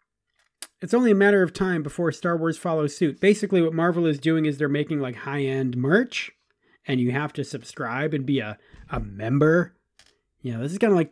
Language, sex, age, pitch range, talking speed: English, male, 30-49, 135-185 Hz, 210 wpm